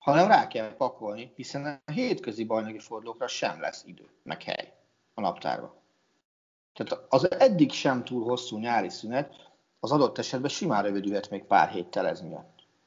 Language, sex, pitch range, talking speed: Hungarian, male, 110-150 Hz, 160 wpm